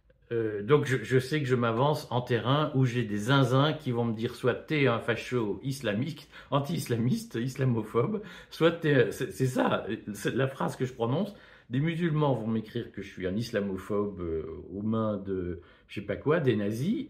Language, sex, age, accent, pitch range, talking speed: French, male, 50-69, French, 110-145 Hz, 190 wpm